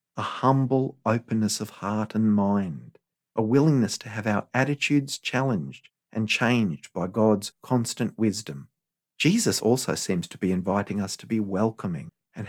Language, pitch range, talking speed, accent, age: English, 100-130 Hz, 150 wpm, Australian, 50-69